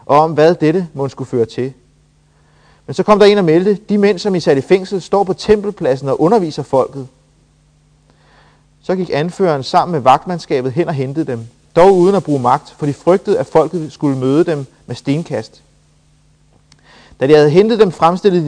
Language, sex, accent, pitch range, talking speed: Danish, male, native, 140-185 Hz, 190 wpm